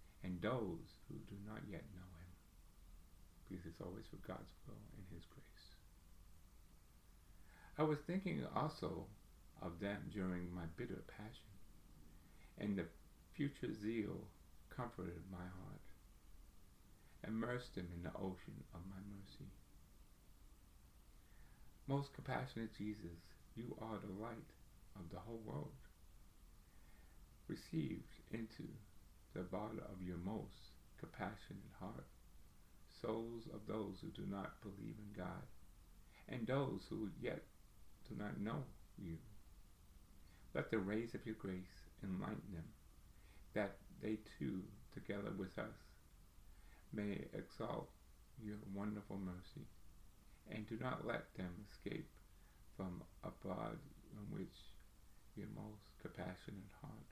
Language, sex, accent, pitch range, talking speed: English, male, American, 85-105 Hz, 120 wpm